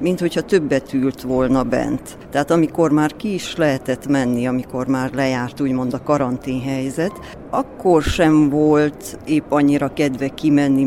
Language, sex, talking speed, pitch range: Hungarian, female, 145 wpm, 135-165 Hz